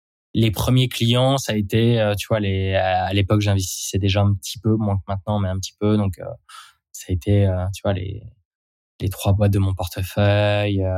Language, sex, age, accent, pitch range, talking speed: French, male, 20-39, French, 95-105 Hz, 215 wpm